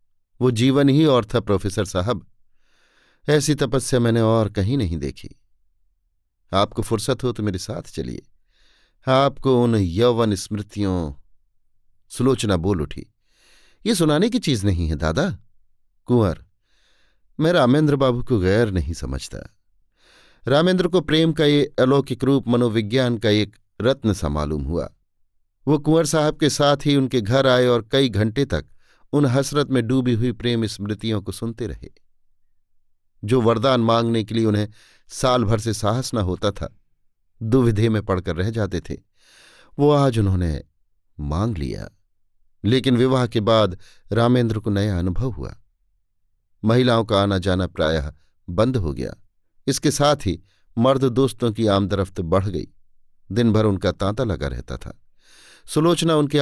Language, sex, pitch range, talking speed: Hindi, male, 90-125 Hz, 145 wpm